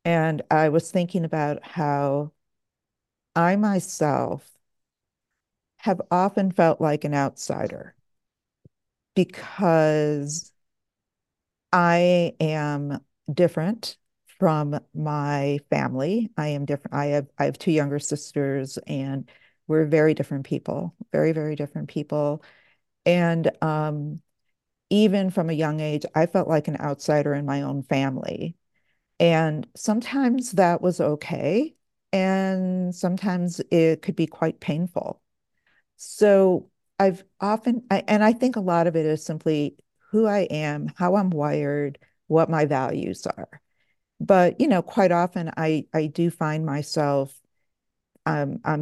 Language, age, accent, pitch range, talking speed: English, 50-69, American, 145-180 Hz, 125 wpm